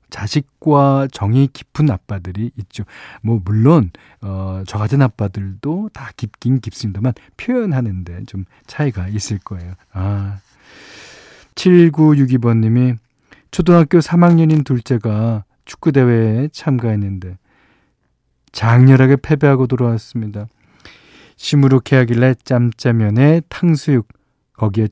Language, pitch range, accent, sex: Korean, 105-140 Hz, native, male